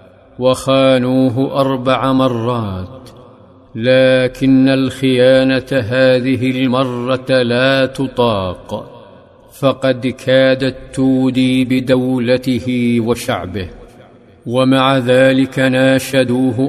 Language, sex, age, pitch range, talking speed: Arabic, male, 50-69, 125-130 Hz, 60 wpm